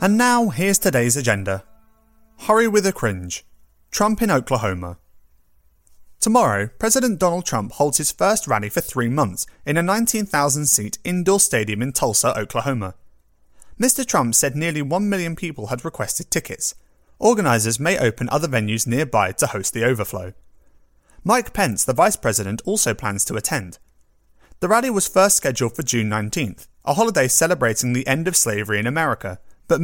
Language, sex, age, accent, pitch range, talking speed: English, male, 30-49, British, 110-175 Hz, 155 wpm